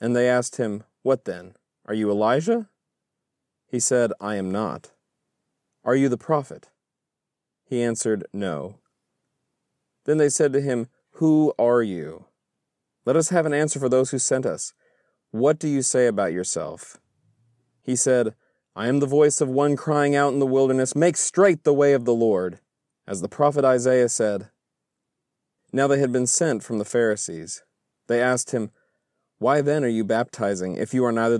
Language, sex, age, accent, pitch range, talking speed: English, male, 30-49, American, 110-135 Hz, 170 wpm